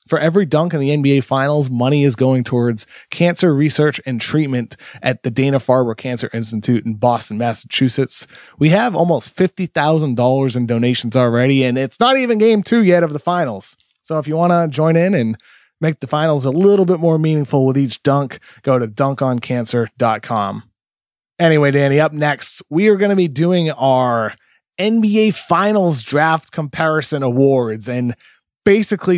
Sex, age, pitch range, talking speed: male, 20-39, 130-170 Hz, 165 wpm